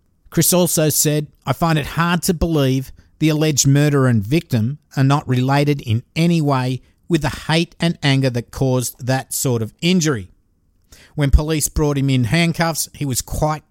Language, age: English, 50-69